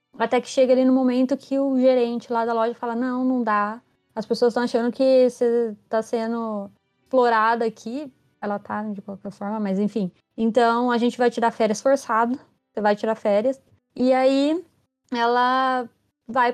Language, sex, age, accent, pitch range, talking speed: Portuguese, female, 20-39, Brazilian, 210-255 Hz, 175 wpm